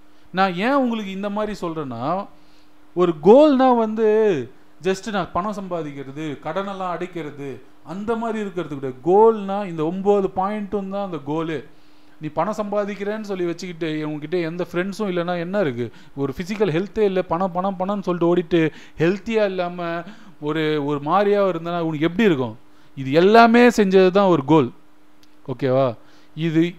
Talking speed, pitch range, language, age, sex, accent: 140 wpm, 150-195 Hz, Tamil, 30-49, male, native